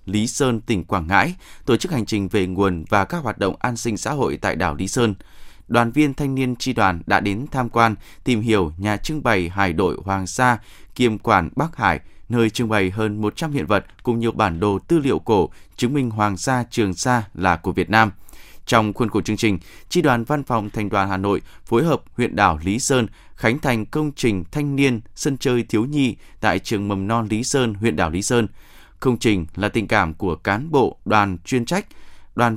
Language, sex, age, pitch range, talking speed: Vietnamese, male, 20-39, 95-125 Hz, 225 wpm